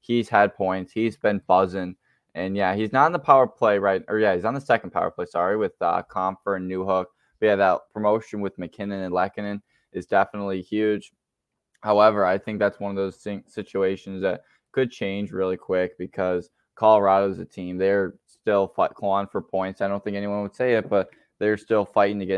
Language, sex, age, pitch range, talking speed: English, male, 10-29, 95-105 Hz, 200 wpm